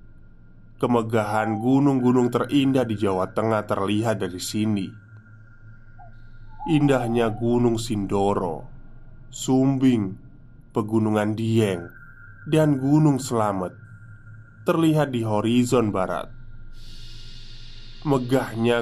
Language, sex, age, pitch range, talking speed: Indonesian, male, 20-39, 110-130 Hz, 75 wpm